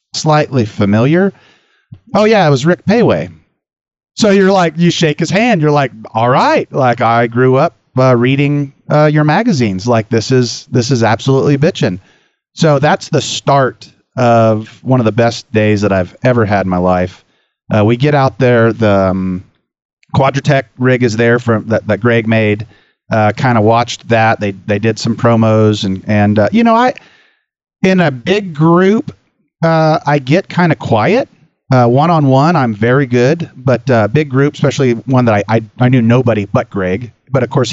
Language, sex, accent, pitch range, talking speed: English, male, American, 110-140 Hz, 185 wpm